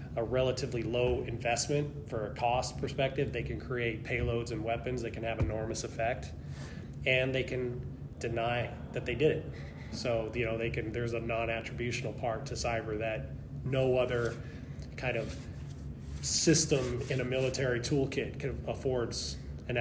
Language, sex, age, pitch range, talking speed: English, male, 20-39, 115-130 Hz, 150 wpm